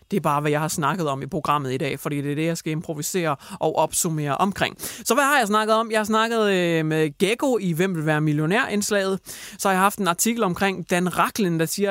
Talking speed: 245 wpm